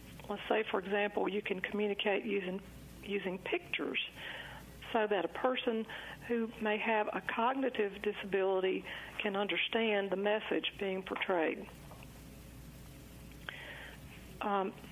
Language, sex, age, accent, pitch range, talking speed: English, female, 60-79, American, 190-230 Hz, 110 wpm